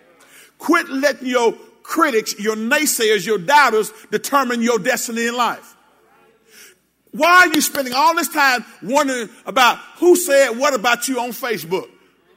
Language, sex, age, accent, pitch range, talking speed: English, male, 50-69, American, 230-300 Hz, 140 wpm